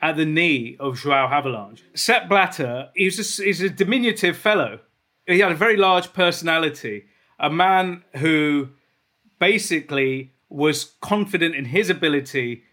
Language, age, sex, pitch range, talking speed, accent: English, 40-59, male, 145-200 Hz, 130 wpm, British